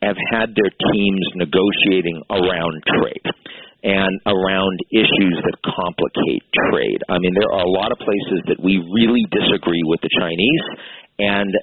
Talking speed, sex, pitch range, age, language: 150 wpm, male, 90-100 Hz, 50-69, English